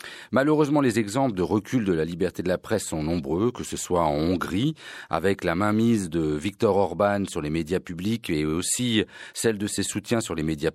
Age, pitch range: 40-59, 85-115 Hz